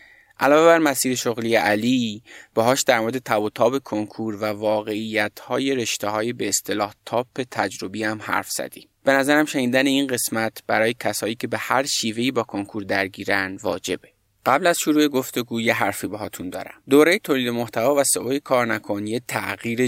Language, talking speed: Persian, 155 wpm